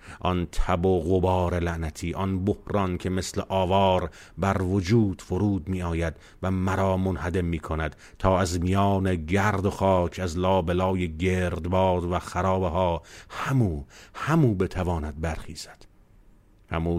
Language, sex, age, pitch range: Persian, male, 50-69, 85-100 Hz